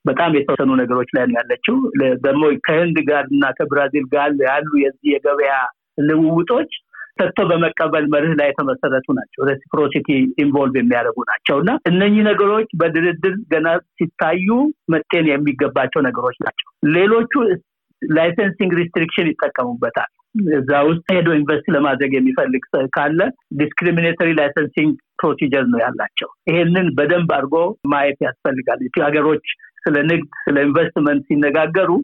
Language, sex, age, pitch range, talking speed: Amharic, male, 60-79, 145-180 Hz, 105 wpm